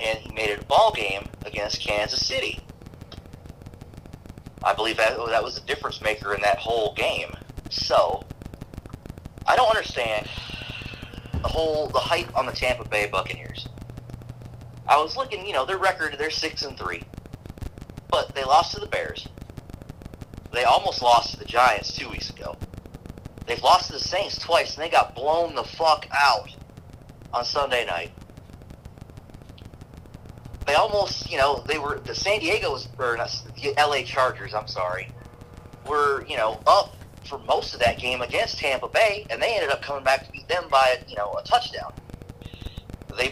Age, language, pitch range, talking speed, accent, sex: 30-49, English, 105-135 Hz, 160 wpm, American, male